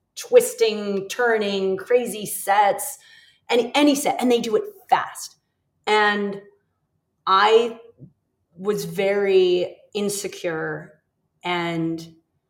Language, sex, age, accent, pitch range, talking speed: English, female, 30-49, American, 175-225 Hz, 85 wpm